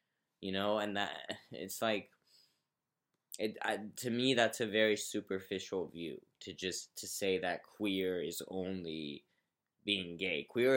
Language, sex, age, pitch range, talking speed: English, male, 20-39, 95-110 Hz, 145 wpm